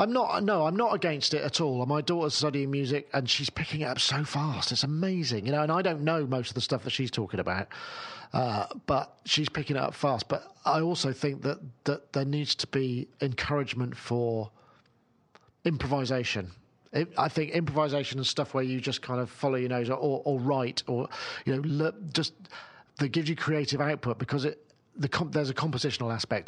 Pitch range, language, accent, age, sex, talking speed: 120-155 Hz, English, British, 40-59, male, 210 wpm